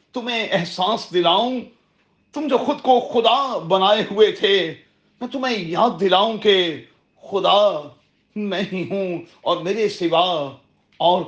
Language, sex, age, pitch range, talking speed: Urdu, male, 40-59, 185-250 Hz, 130 wpm